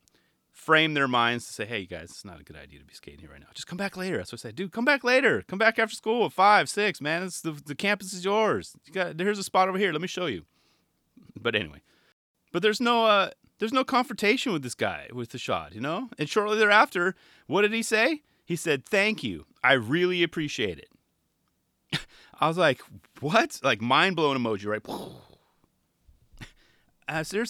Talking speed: 215 wpm